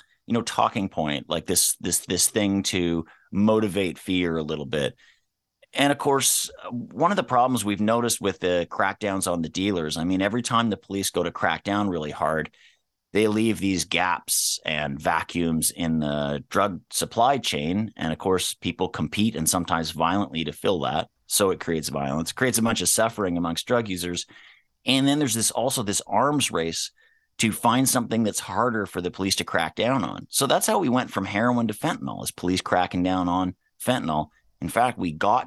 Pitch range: 90-115 Hz